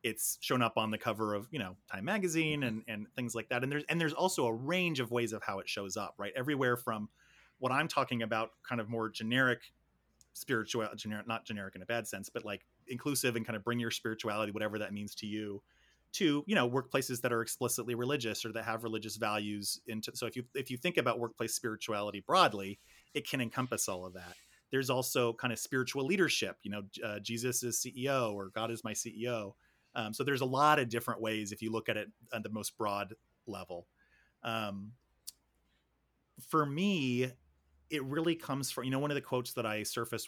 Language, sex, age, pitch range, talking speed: English, male, 30-49, 110-130 Hz, 215 wpm